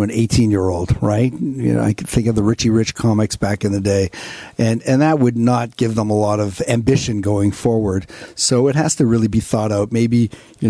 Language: English